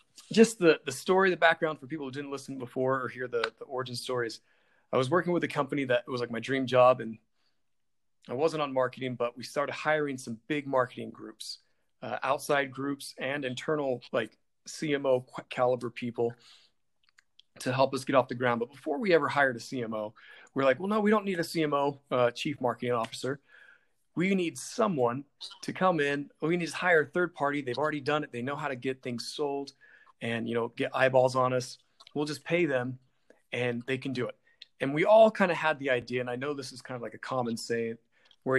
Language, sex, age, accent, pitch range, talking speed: English, male, 40-59, American, 125-155 Hz, 215 wpm